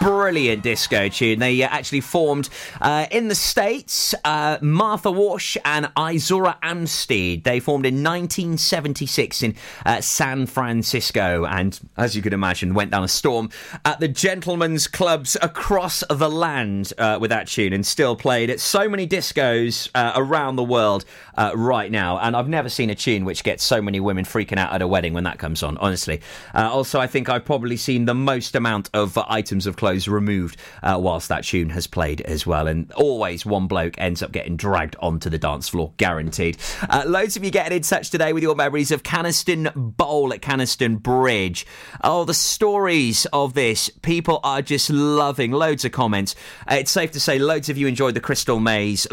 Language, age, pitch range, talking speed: English, 30-49, 100-150 Hz, 190 wpm